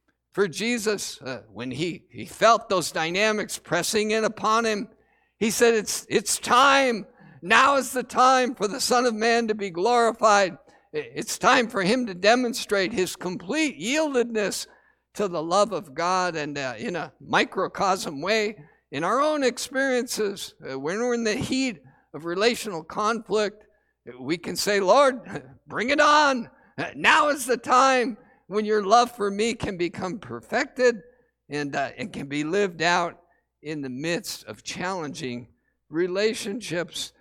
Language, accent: English, American